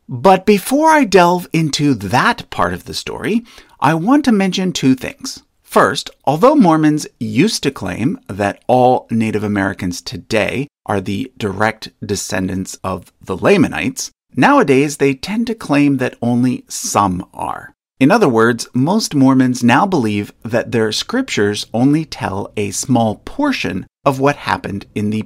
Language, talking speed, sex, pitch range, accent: English, 150 wpm, male, 105-160 Hz, American